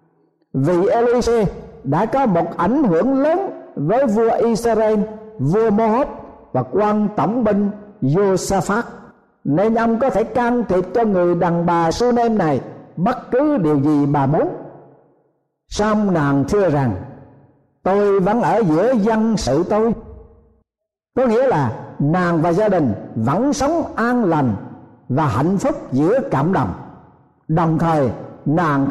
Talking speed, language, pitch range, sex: 140 wpm, Vietnamese, 145-235 Hz, male